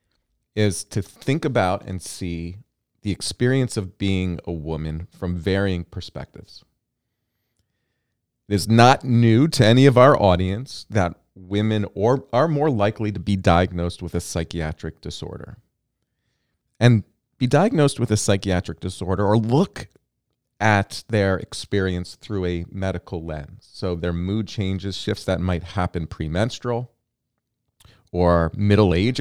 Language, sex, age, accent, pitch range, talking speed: English, male, 30-49, American, 85-115 Hz, 130 wpm